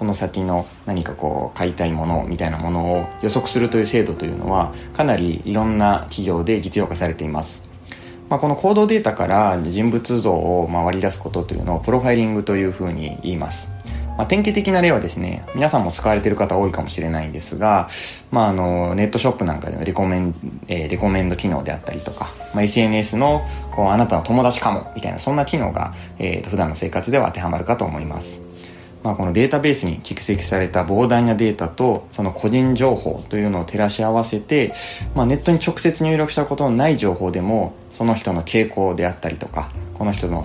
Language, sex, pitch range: Japanese, male, 85-115 Hz